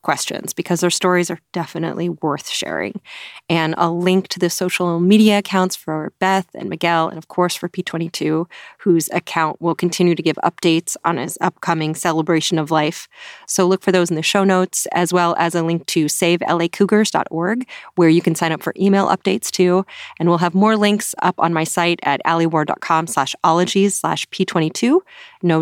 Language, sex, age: English, female, 30-49